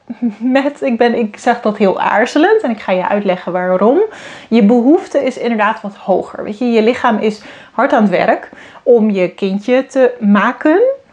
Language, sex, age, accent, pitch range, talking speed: Dutch, female, 30-49, Dutch, 200-250 Hz, 165 wpm